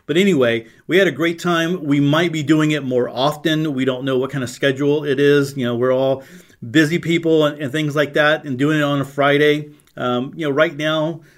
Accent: American